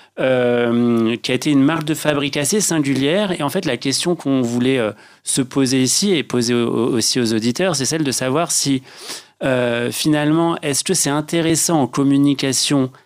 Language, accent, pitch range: French, French, 120-155 Hz